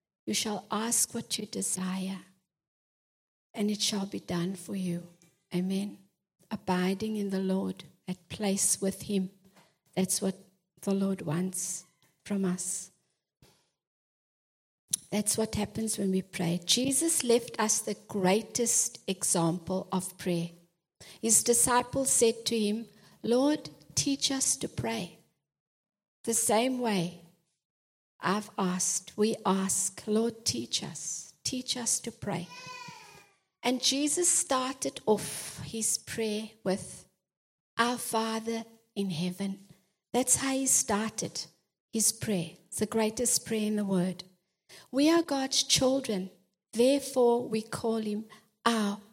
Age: 60-79